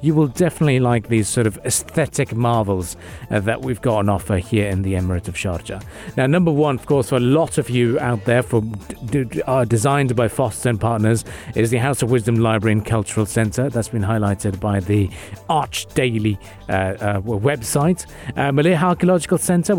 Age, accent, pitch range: 40-59, British, 110-140 Hz